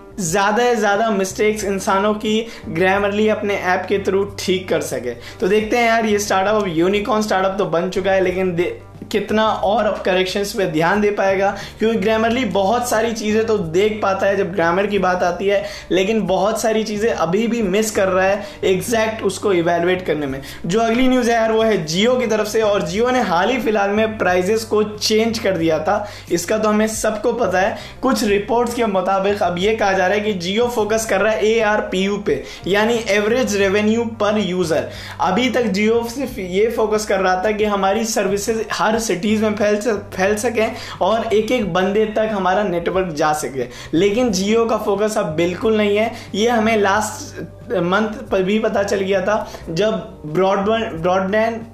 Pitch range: 195-220 Hz